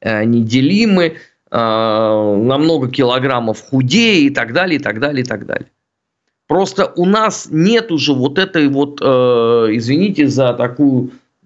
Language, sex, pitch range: Russian, male, 120-160 Hz